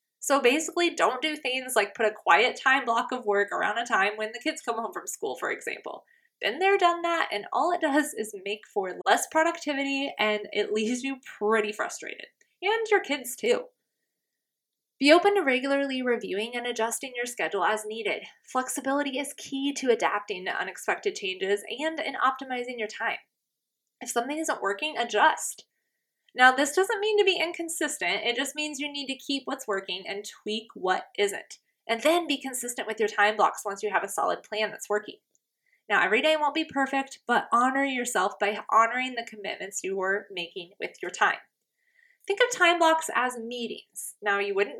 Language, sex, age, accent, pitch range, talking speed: English, female, 20-39, American, 220-345 Hz, 190 wpm